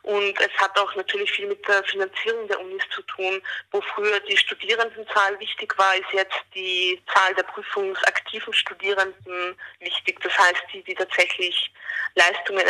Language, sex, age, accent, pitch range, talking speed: German, female, 20-39, German, 180-215 Hz, 155 wpm